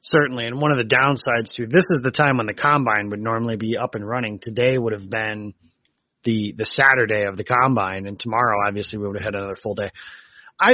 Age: 30-49